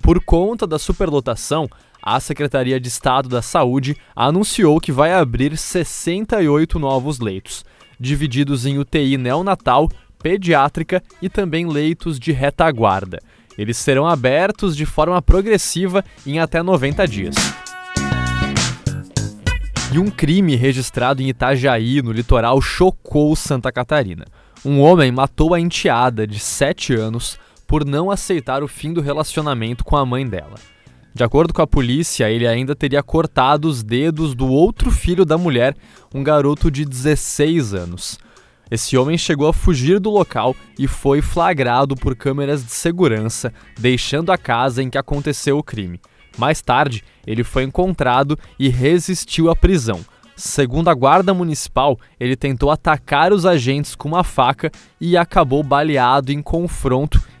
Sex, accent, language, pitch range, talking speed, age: male, Brazilian, Portuguese, 130-165 Hz, 140 wpm, 20-39